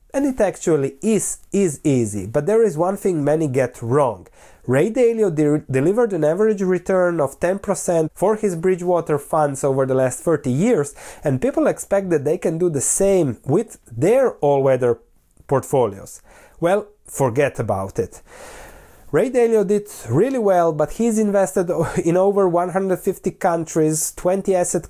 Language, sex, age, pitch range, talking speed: English, male, 30-49, 135-185 Hz, 150 wpm